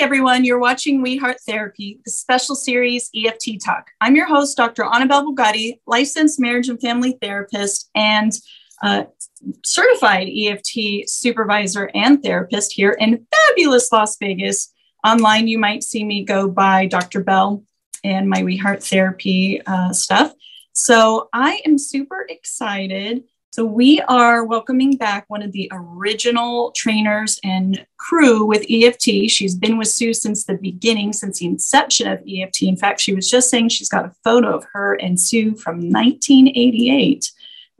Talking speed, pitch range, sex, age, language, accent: 155 wpm, 200-255 Hz, female, 30-49, English, American